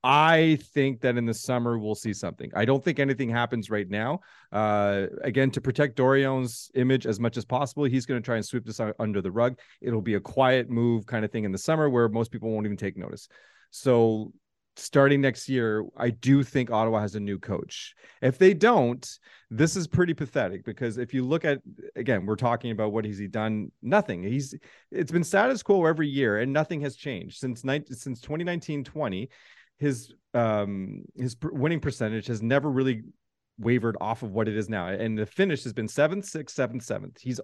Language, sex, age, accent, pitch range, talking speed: English, male, 30-49, American, 110-140 Hz, 205 wpm